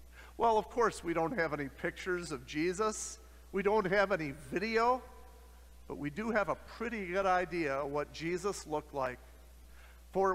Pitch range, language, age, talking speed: 145-205 Hz, English, 50-69, 170 wpm